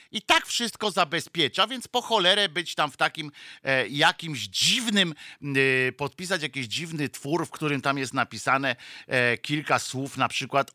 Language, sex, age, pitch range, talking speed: Polish, male, 50-69, 125-175 Hz, 145 wpm